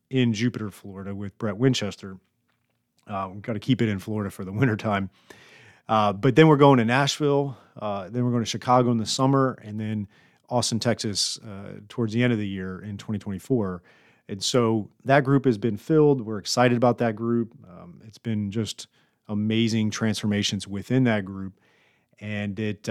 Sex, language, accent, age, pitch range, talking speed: male, English, American, 30-49, 105-125 Hz, 185 wpm